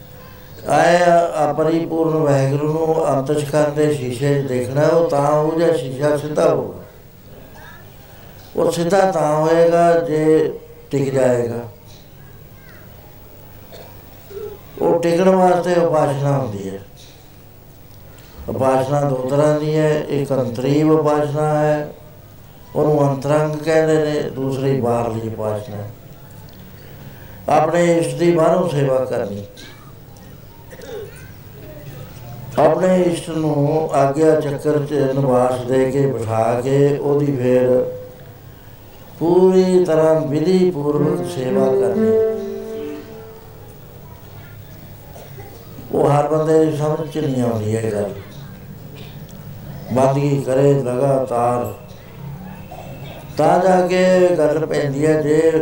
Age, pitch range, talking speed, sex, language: 60-79, 125-155 Hz, 95 wpm, male, Punjabi